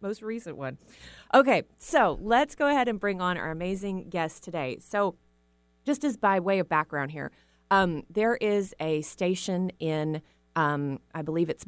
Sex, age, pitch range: female, 30-49, 140-195 Hz